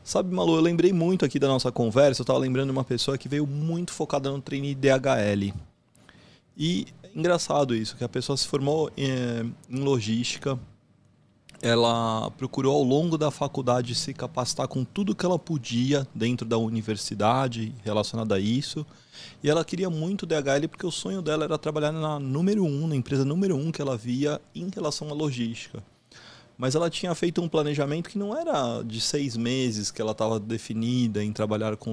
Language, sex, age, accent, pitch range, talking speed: Portuguese, male, 20-39, Brazilian, 120-155 Hz, 185 wpm